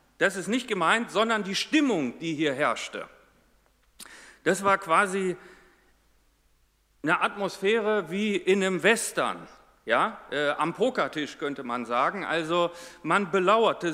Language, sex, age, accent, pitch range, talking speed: German, male, 40-59, German, 140-200 Hz, 120 wpm